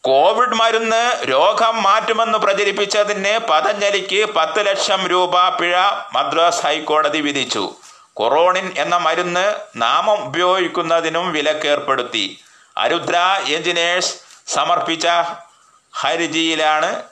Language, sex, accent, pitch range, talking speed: Malayalam, male, native, 165-210 Hz, 85 wpm